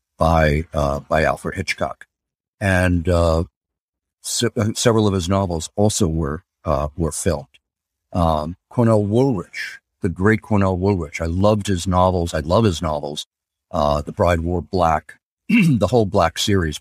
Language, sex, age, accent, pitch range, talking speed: English, male, 50-69, American, 80-100 Hz, 145 wpm